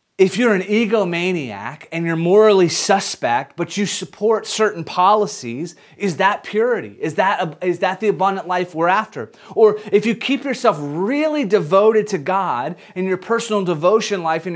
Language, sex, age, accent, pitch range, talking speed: English, male, 30-49, American, 140-205 Hz, 165 wpm